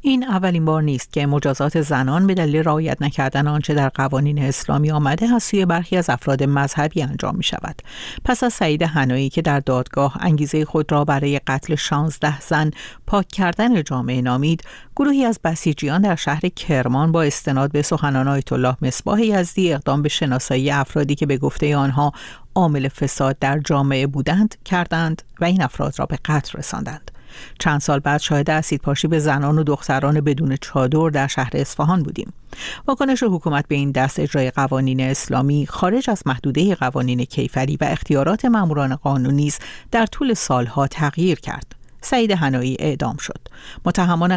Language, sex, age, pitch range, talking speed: Persian, female, 50-69, 140-175 Hz, 165 wpm